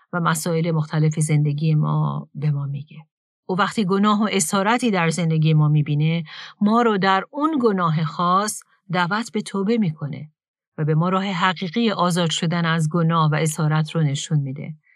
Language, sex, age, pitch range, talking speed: Persian, female, 40-59, 160-200 Hz, 165 wpm